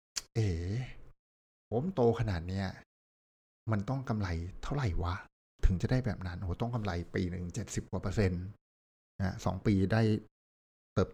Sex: male